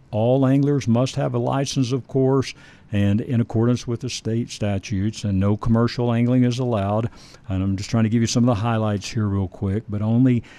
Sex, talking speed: male, 210 wpm